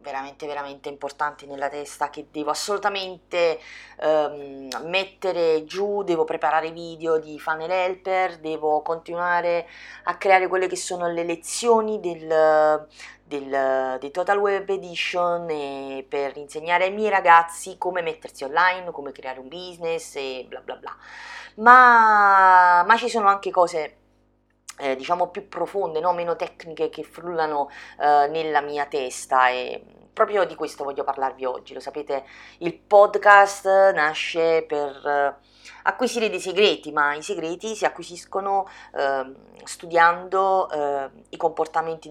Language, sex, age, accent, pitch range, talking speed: English, female, 30-49, Italian, 145-185 Hz, 135 wpm